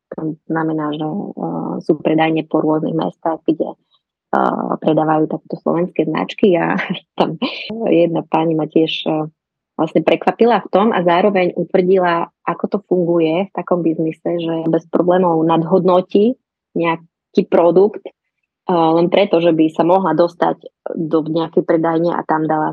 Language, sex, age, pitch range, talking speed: Slovak, female, 20-39, 160-180 Hz, 135 wpm